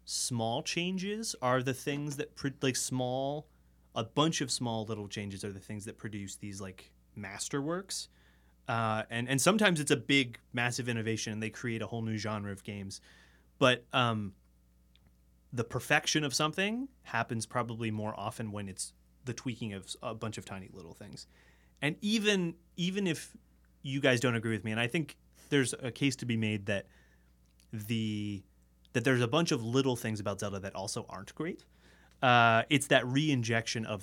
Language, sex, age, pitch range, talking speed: English, male, 30-49, 100-135 Hz, 175 wpm